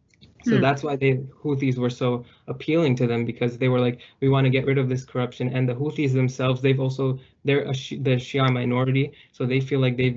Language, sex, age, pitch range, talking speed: English, male, 20-39, 125-135 Hz, 220 wpm